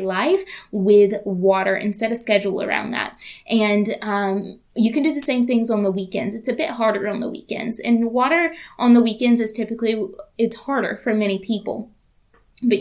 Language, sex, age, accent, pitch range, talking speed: English, female, 20-39, American, 205-235 Hz, 185 wpm